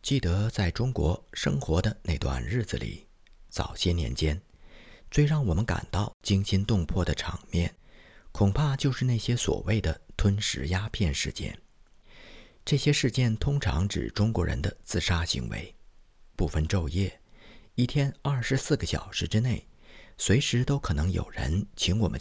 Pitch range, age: 85-115 Hz, 50-69